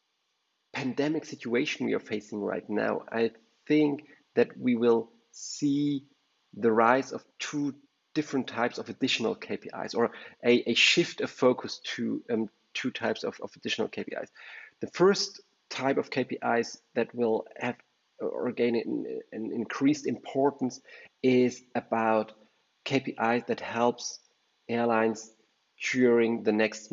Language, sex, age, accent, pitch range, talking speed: English, male, 30-49, German, 110-125 Hz, 130 wpm